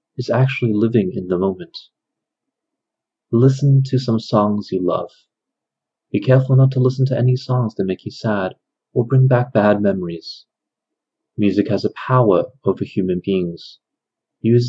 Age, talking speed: 30-49, 150 wpm